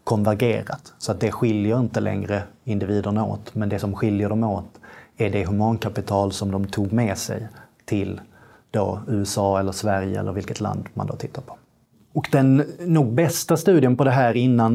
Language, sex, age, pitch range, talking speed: Swedish, male, 30-49, 105-125 Hz, 180 wpm